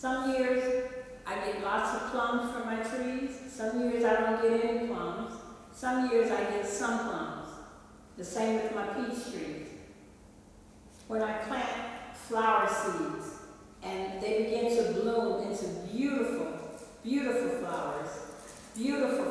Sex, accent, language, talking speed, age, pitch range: female, American, English, 135 wpm, 50-69, 200-245 Hz